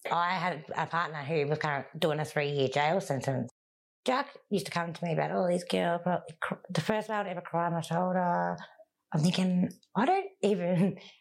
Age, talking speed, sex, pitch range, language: 30-49, 210 wpm, female, 140-195 Hz, English